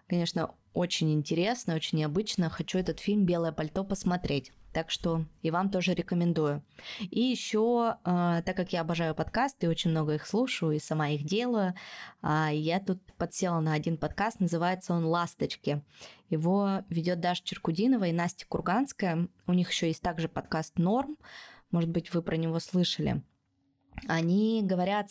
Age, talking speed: 20-39, 150 wpm